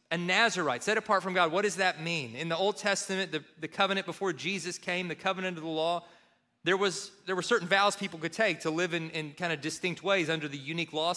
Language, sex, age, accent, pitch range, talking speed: English, male, 30-49, American, 150-195 Hz, 245 wpm